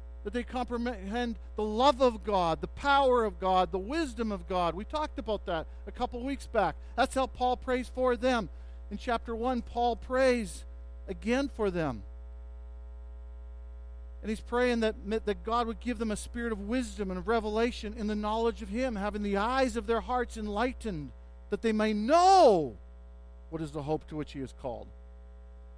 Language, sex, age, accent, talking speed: English, male, 50-69, American, 180 wpm